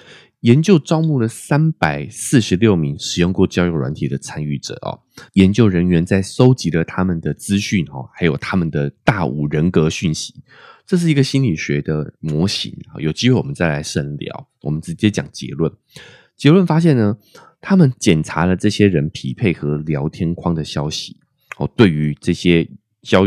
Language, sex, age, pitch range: Chinese, male, 20-39, 80-115 Hz